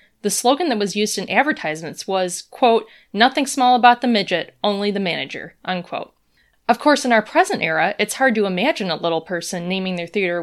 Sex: female